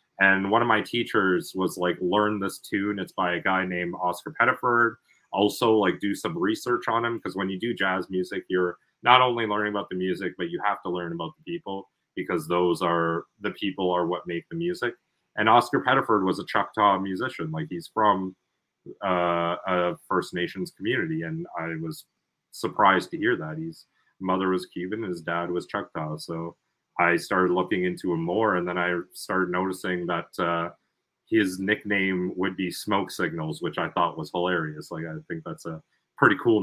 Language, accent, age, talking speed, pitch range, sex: French, American, 30-49, 190 wpm, 90-120 Hz, male